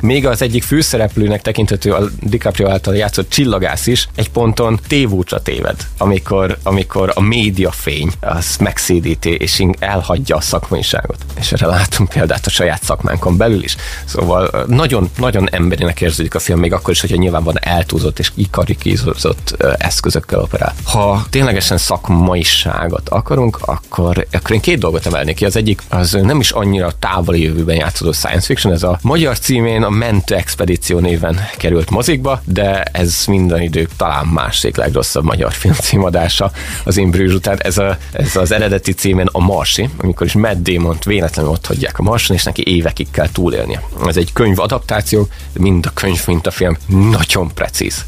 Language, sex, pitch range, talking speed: Hungarian, male, 85-105 Hz, 160 wpm